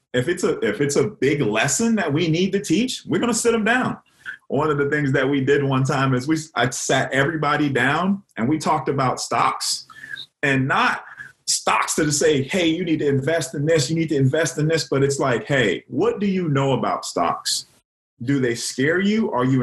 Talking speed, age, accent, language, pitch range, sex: 225 wpm, 30-49, American, English, 130-175 Hz, male